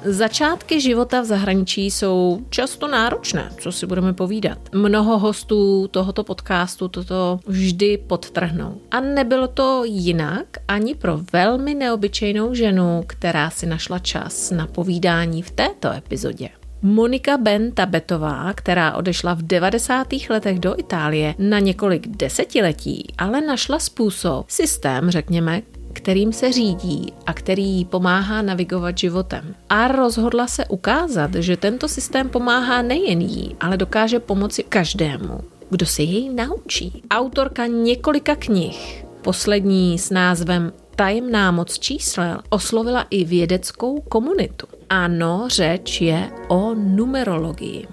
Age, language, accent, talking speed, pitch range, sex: 30-49, Czech, native, 125 wpm, 175-230 Hz, female